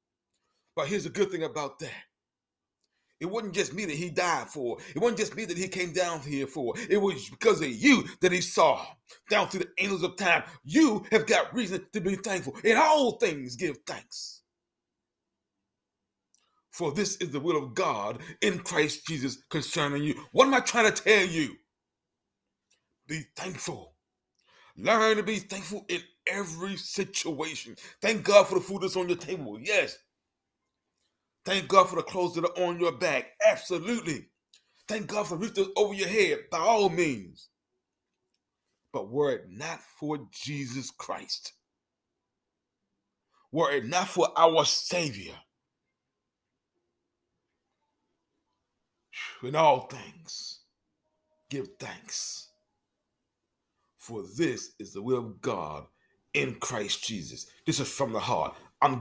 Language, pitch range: English, 160-210 Hz